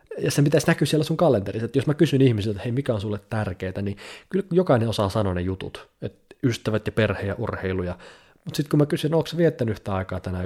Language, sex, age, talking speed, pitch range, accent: Finnish, male, 30-49, 235 wpm, 100-135 Hz, native